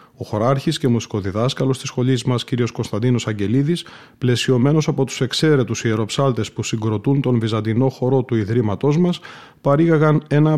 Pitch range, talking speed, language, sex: 115-140 Hz, 140 wpm, Greek, male